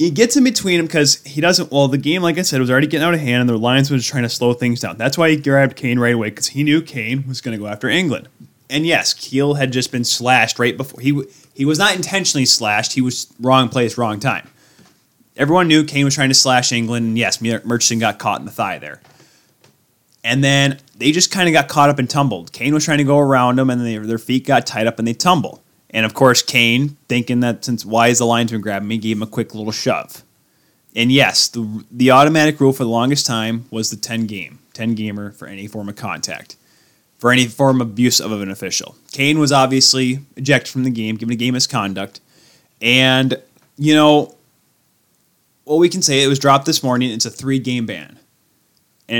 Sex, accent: male, American